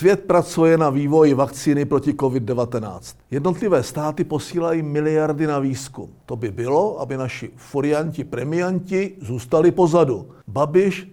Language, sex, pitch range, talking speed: Czech, male, 135-185 Hz, 125 wpm